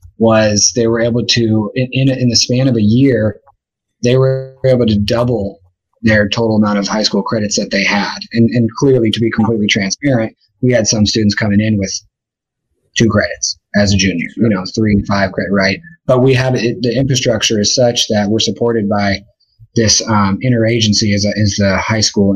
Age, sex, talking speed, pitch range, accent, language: 30-49, male, 195 wpm, 100-125 Hz, American, English